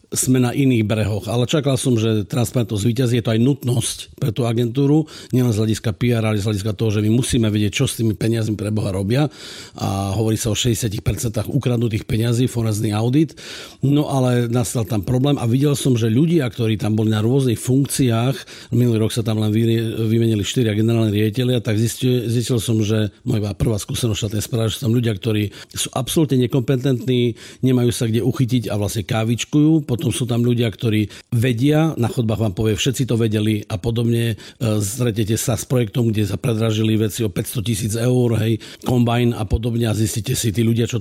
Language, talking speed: Slovak, 195 wpm